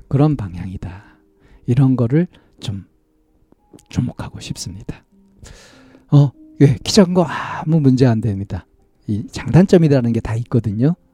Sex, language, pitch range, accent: male, Korean, 105-140 Hz, native